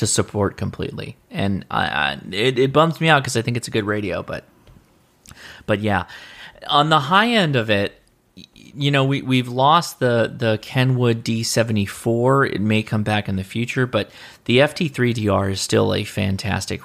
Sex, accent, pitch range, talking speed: male, American, 105-130 Hz, 170 wpm